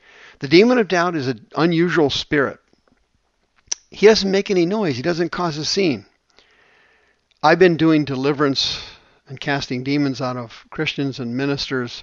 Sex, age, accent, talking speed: male, 50-69, American, 150 wpm